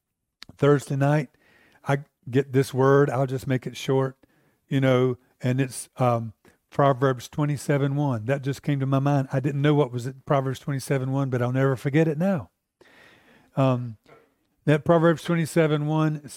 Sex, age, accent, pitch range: male, 50-69, American, 125-145 Hz